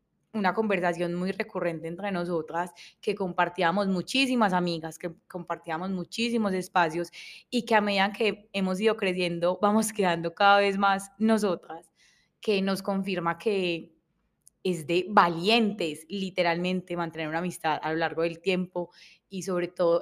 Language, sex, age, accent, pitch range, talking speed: Spanish, female, 20-39, Colombian, 175-210 Hz, 140 wpm